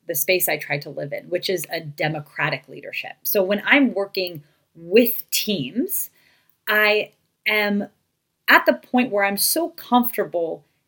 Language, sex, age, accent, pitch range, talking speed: English, female, 30-49, American, 155-215 Hz, 150 wpm